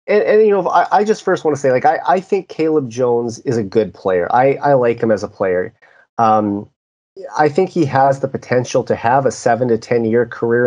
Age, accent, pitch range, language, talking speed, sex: 30-49, American, 110-140 Hz, English, 240 wpm, male